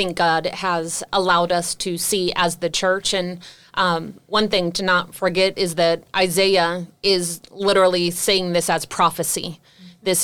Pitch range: 175-205 Hz